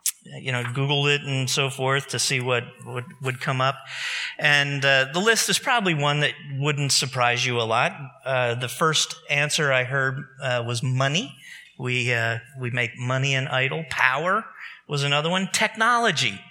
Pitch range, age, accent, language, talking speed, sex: 130-175 Hz, 50-69, American, English, 175 wpm, male